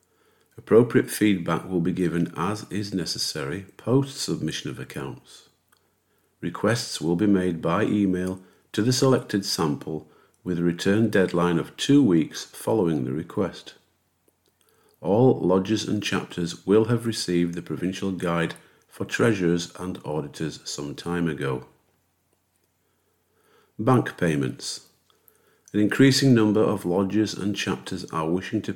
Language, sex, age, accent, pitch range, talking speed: English, male, 50-69, British, 85-105 Hz, 125 wpm